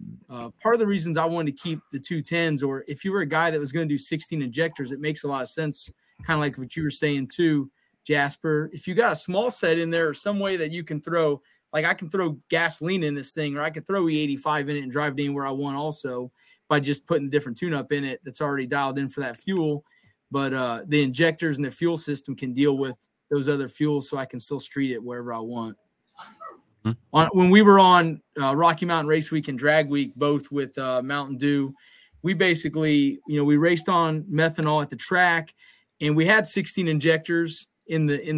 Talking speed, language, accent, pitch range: 235 wpm, English, American, 140-165 Hz